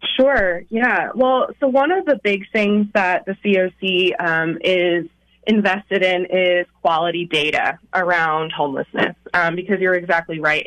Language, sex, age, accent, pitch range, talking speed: English, female, 20-39, American, 175-210 Hz, 145 wpm